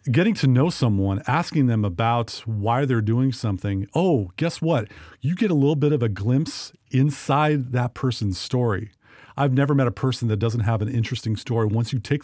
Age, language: 50-69, English